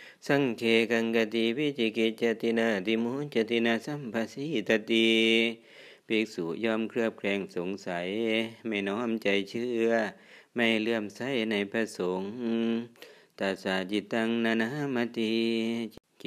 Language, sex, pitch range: Thai, male, 100-115 Hz